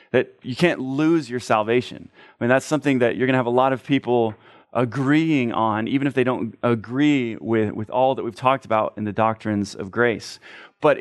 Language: English